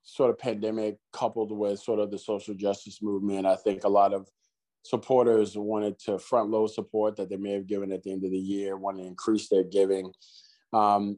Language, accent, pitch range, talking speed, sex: English, American, 100-110 Hz, 205 wpm, male